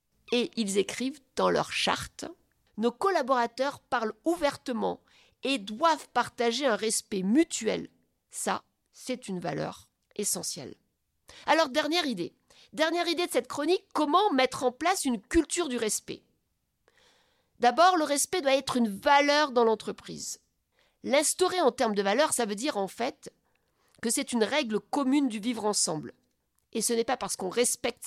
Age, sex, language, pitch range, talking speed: 50-69, female, French, 215-310 Hz, 155 wpm